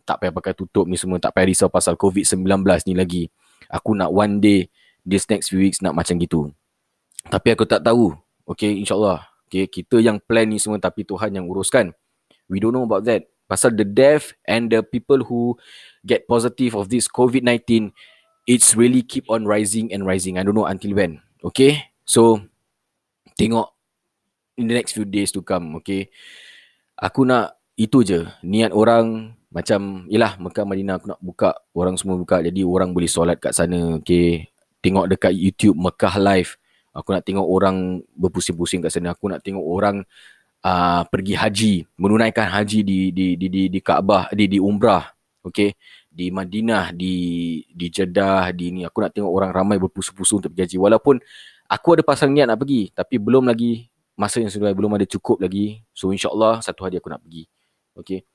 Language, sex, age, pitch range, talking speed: Malay, male, 20-39, 90-110 Hz, 180 wpm